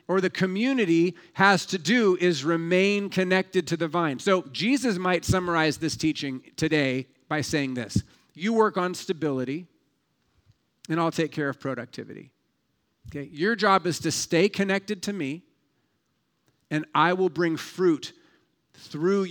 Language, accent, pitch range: English, American, 160-195 Hz